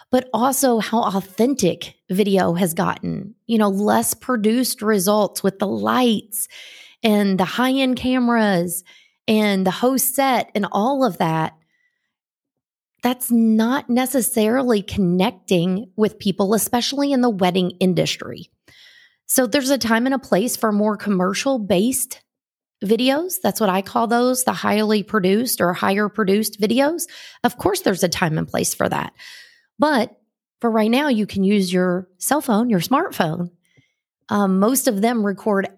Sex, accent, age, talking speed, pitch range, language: female, American, 30-49, 145 wpm, 195-245 Hz, English